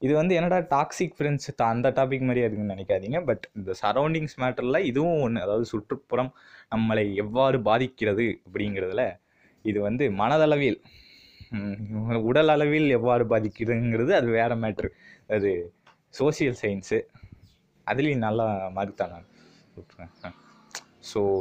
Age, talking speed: 20-39, 115 wpm